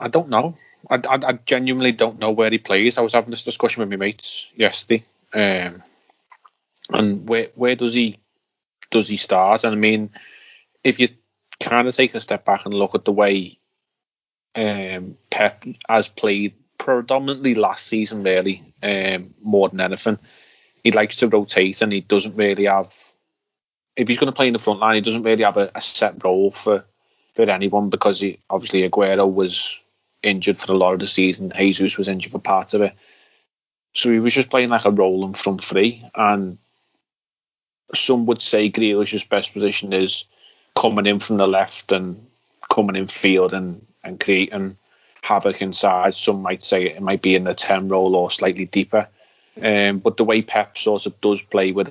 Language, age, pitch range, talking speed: English, 30-49, 95-110 Hz, 185 wpm